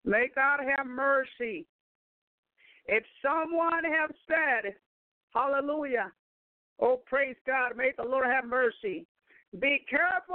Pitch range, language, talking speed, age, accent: 285-345 Hz, English, 110 wpm, 50-69, American